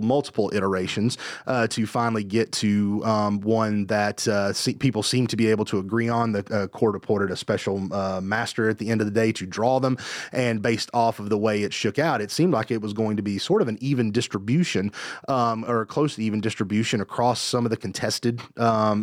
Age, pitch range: 30-49, 110-125 Hz